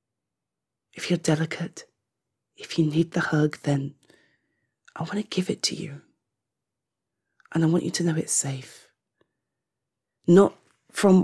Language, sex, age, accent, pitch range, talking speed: English, female, 30-49, British, 140-175 Hz, 140 wpm